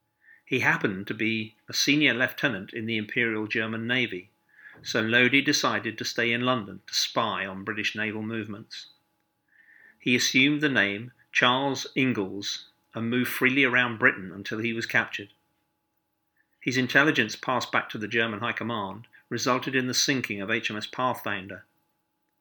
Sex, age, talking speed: male, 50-69, 150 wpm